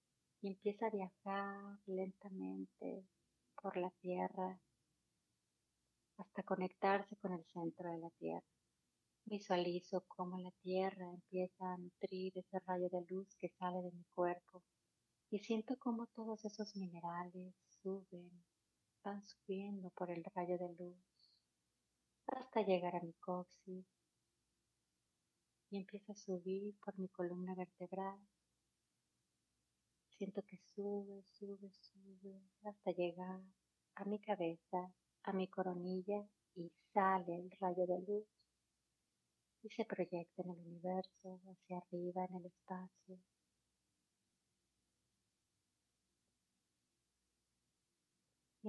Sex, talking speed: female, 110 wpm